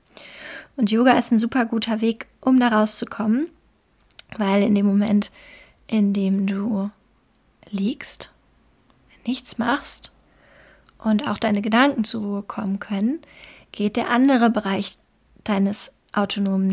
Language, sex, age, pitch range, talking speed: German, female, 30-49, 210-235 Hz, 120 wpm